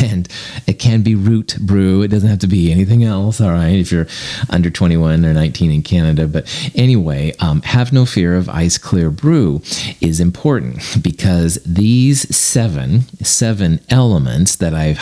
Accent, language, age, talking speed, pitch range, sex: American, English, 40-59, 170 wpm, 80-115 Hz, male